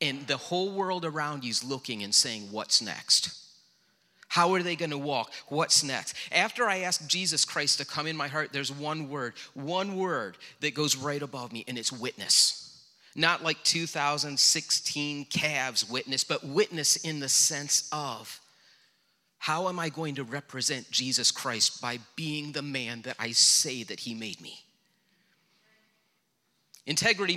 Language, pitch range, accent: English, 130-175 Hz, American